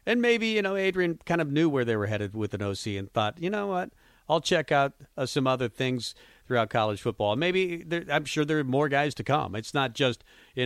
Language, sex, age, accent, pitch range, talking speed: English, male, 40-59, American, 110-140 Hz, 250 wpm